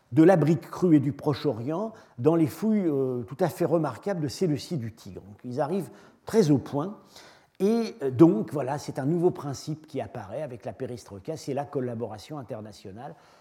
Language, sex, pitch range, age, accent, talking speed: French, male, 130-165 Hz, 50-69, French, 195 wpm